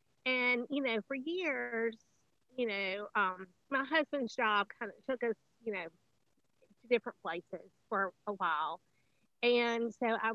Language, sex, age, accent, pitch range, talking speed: English, female, 30-49, American, 190-240 Hz, 150 wpm